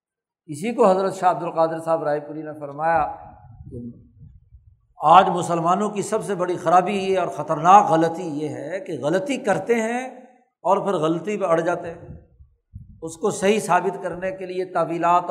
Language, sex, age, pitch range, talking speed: Urdu, male, 60-79, 160-200 Hz, 170 wpm